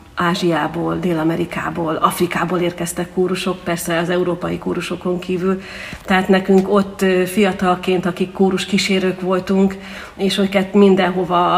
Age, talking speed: 40-59, 110 wpm